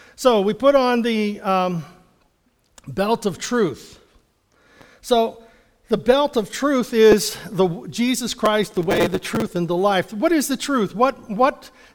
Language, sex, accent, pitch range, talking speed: English, male, American, 175-230 Hz, 155 wpm